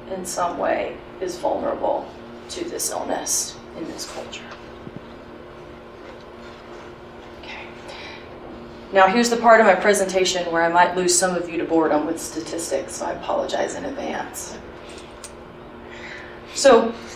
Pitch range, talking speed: 170-200 Hz, 125 wpm